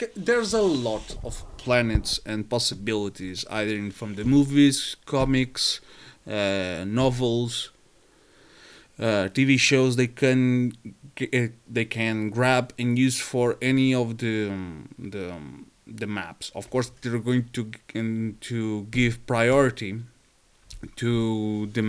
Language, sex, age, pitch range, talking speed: English, male, 30-49, 105-125 Hz, 125 wpm